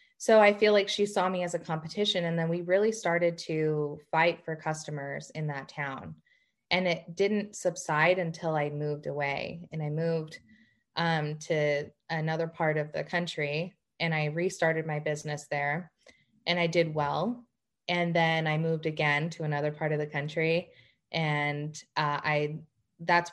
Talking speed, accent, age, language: 165 wpm, American, 20-39, English